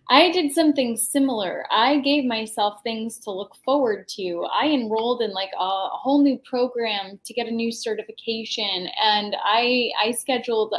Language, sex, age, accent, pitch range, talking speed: English, female, 10-29, American, 220-285 Hz, 160 wpm